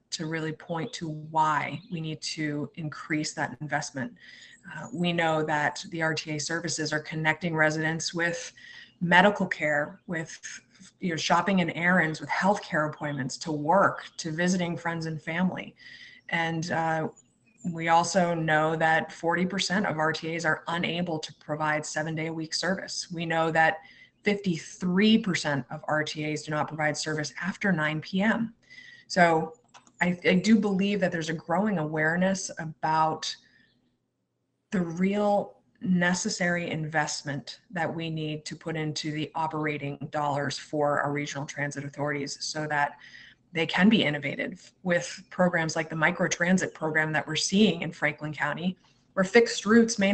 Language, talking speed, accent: English, 145 wpm, American